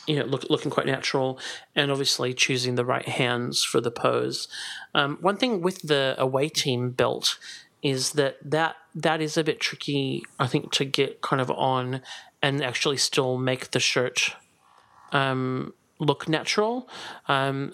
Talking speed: 160 wpm